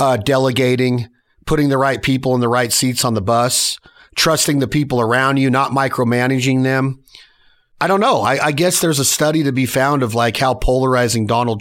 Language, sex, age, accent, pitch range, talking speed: English, male, 40-59, American, 120-150 Hz, 195 wpm